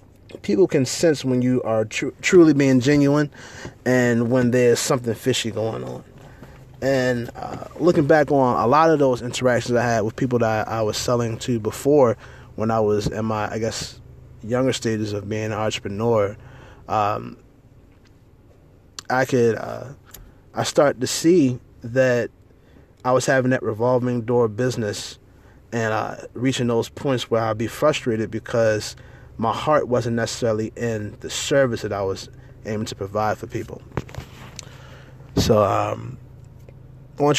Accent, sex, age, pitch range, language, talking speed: American, male, 20-39, 110-130 Hz, English, 155 wpm